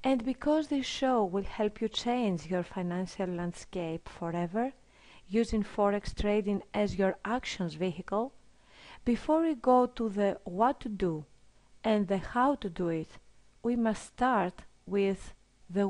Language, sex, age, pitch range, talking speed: English, female, 40-59, 170-240 Hz, 145 wpm